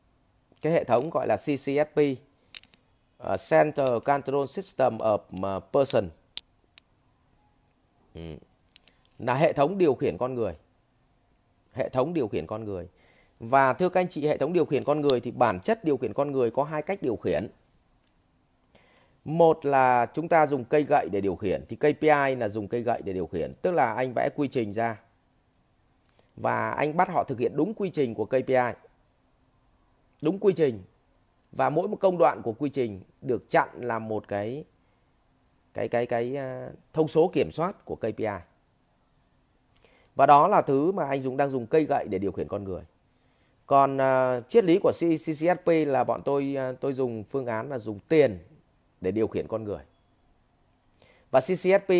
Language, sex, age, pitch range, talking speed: English, male, 30-49, 120-150 Hz, 175 wpm